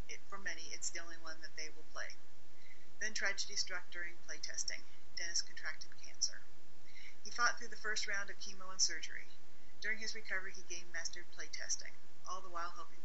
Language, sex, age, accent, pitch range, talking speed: English, female, 40-59, American, 170-200 Hz, 180 wpm